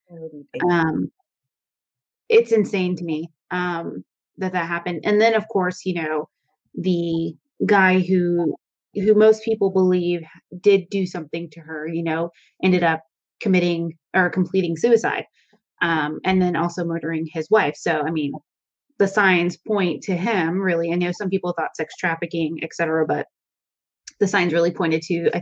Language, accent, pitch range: English, American, 165-195 Hz